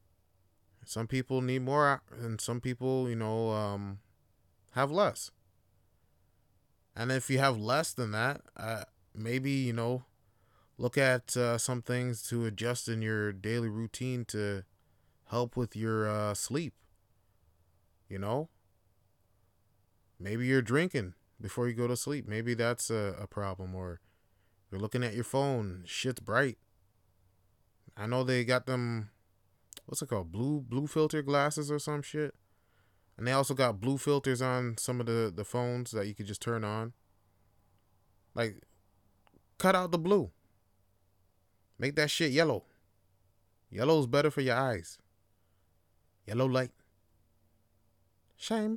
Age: 20-39